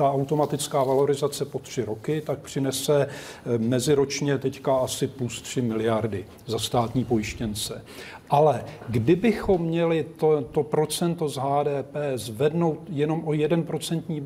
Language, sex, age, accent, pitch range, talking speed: Czech, male, 40-59, native, 125-150 Hz, 120 wpm